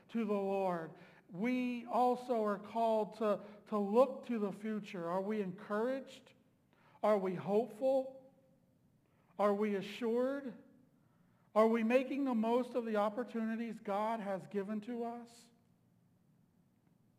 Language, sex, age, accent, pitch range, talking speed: English, male, 50-69, American, 190-230 Hz, 120 wpm